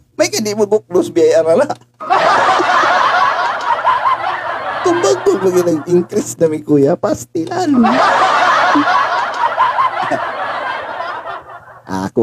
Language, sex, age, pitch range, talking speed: Filipino, male, 50-69, 115-175 Hz, 95 wpm